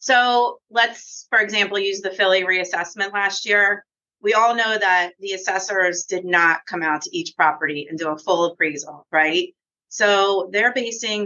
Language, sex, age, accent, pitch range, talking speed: English, female, 30-49, American, 170-200 Hz, 170 wpm